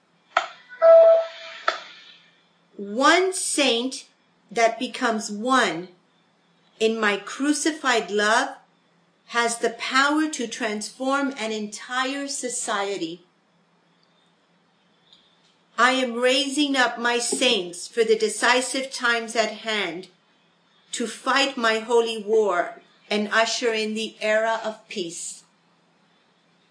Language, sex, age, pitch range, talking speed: English, female, 50-69, 205-240 Hz, 90 wpm